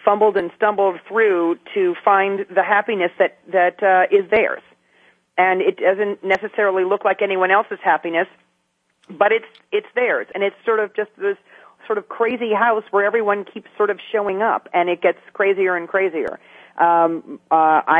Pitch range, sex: 165-210 Hz, female